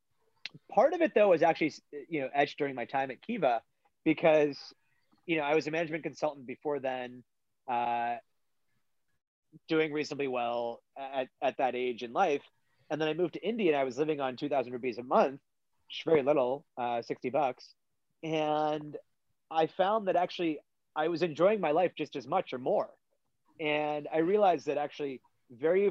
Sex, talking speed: male, 180 wpm